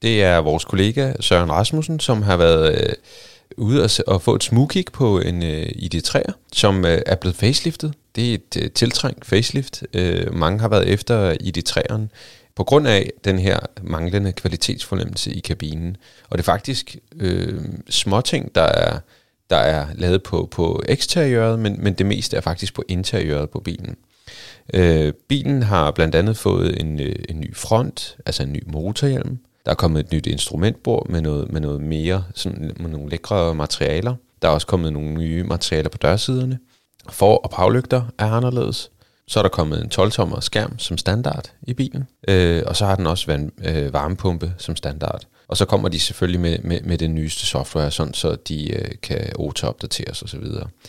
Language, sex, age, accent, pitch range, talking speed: Danish, male, 30-49, native, 85-115 Hz, 185 wpm